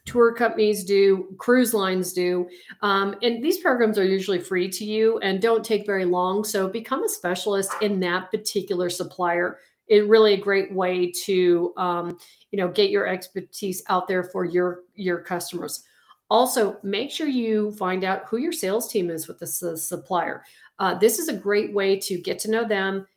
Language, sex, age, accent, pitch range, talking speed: English, female, 40-59, American, 190-220 Hz, 185 wpm